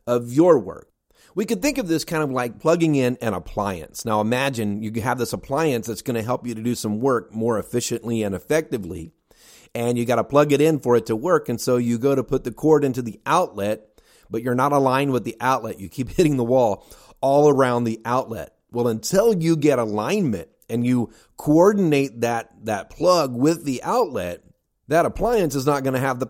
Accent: American